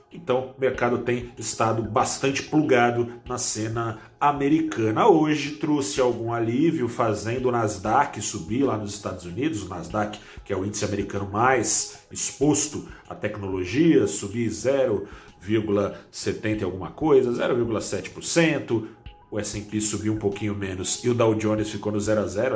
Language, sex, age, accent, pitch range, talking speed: Portuguese, male, 40-59, Brazilian, 105-125 Hz, 140 wpm